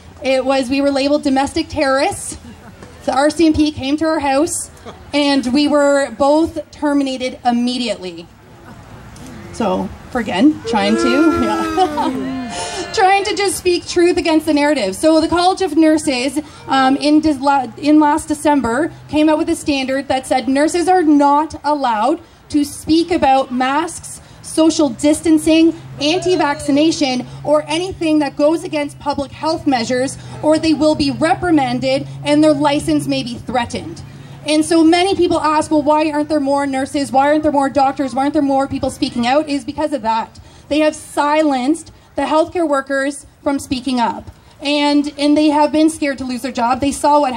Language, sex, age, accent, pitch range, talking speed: English, female, 30-49, American, 270-310 Hz, 160 wpm